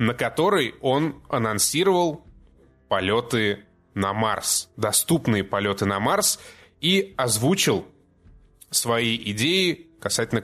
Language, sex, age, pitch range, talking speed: Russian, male, 20-39, 105-140 Hz, 90 wpm